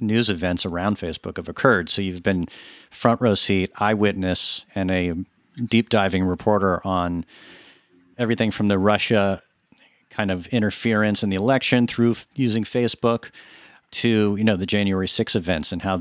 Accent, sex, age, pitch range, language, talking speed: American, male, 50-69, 95-125 Hz, English, 155 wpm